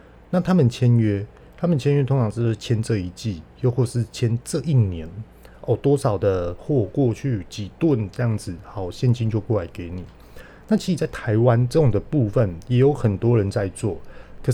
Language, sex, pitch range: Chinese, male, 100-125 Hz